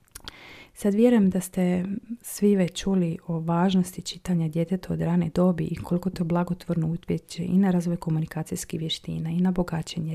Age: 30-49